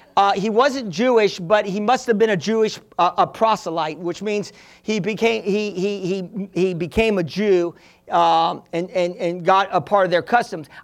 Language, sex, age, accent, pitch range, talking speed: English, male, 50-69, American, 180-235 Hz, 195 wpm